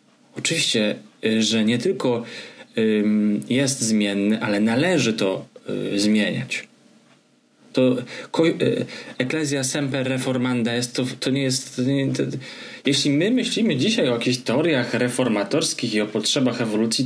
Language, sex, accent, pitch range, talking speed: Polish, male, native, 125-155 Hz, 125 wpm